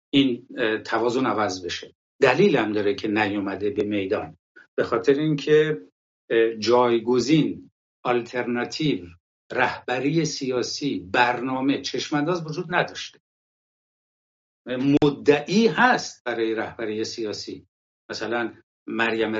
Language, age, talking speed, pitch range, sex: English, 60-79, 95 wpm, 110-150 Hz, male